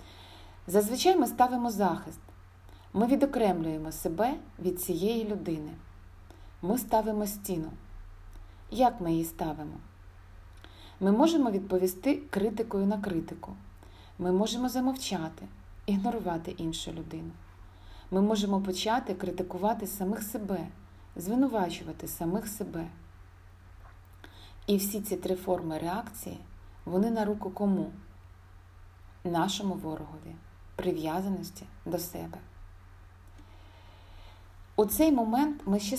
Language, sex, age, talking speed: Ukrainian, female, 30-49, 95 wpm